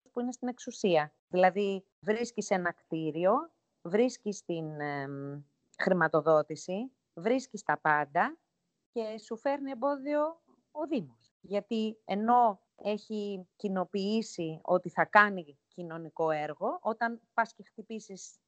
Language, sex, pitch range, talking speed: Greek, female, 175-235 Hz, 110 wpm